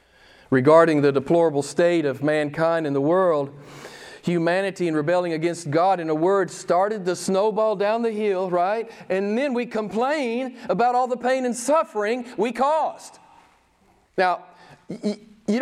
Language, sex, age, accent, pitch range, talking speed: English, male, 40-59, American, 145-235 Hz, 145 wpm